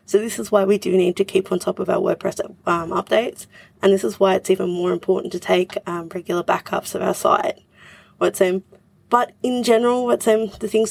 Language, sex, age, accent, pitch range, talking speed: English, female, 20-39, Australian, 185-210 Hz, 225 wpm